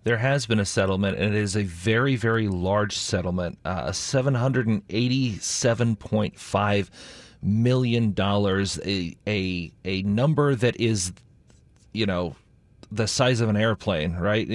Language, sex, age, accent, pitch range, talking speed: English, male, 30-49, American, 105-130 Hz, 145 wpm